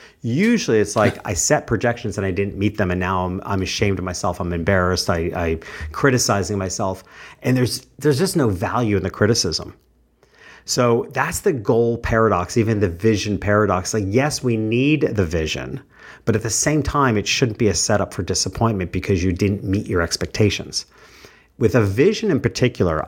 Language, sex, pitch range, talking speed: English, male, 95-125 Hz, 180 wpm